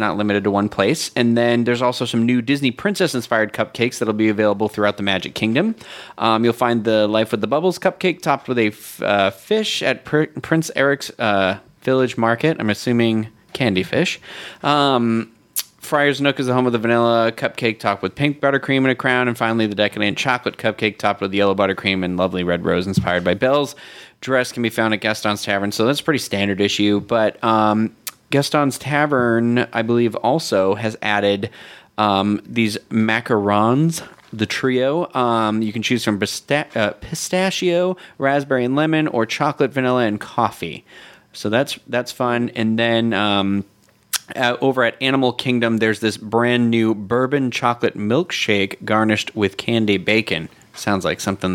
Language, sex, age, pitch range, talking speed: English, male, 30-49, 105-130 Hz, 175 wpm